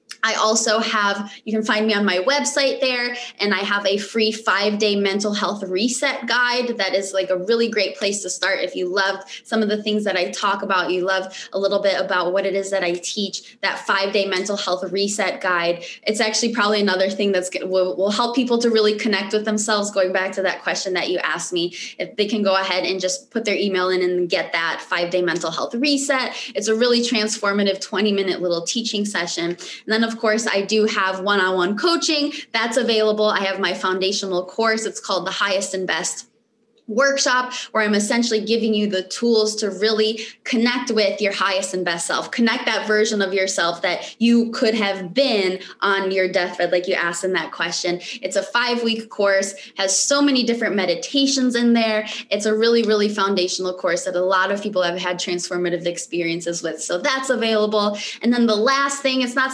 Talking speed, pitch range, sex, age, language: 210 wpm, 190-225 Hz, female, 20-39, English